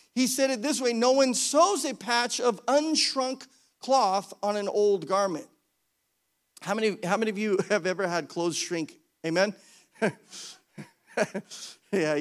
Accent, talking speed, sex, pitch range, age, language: American, 145 wpm, male, 155-215 Hz, 40-59, English